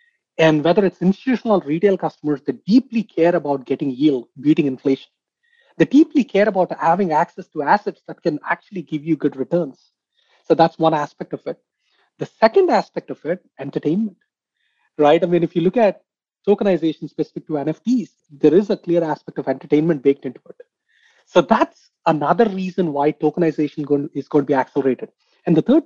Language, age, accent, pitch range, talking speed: English, 30-49, Indian, 145-200 Hz, 175 wpm